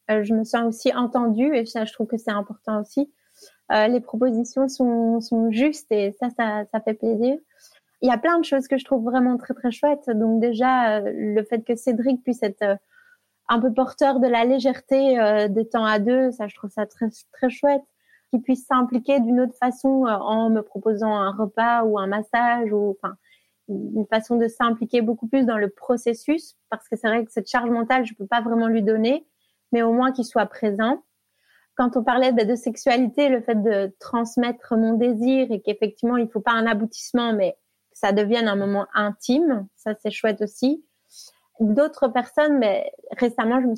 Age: 30-49